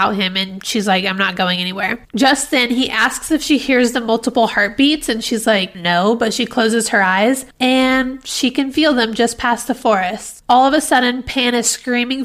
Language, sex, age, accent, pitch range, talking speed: English, female, 20-39, American, 215-250 Hz, 210 wpm